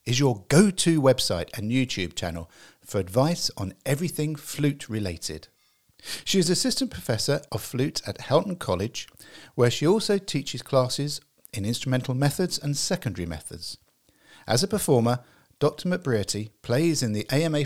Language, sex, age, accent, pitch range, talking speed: English, male, 50-69, British, 105-165 Hz, 140 wpm